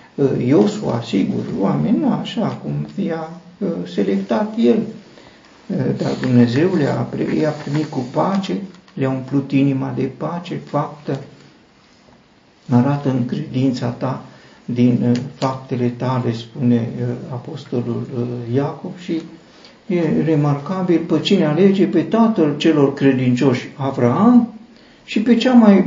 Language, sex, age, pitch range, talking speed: Romanian, male, 50-69, 130-180 Hz, 105 wpm